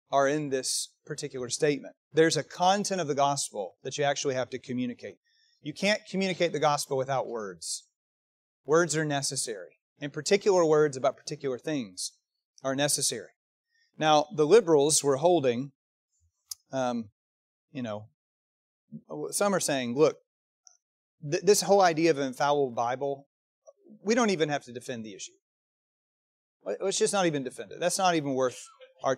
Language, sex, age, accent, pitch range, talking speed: English, male, 30-49, American, 130-175 Hz, 150 wpm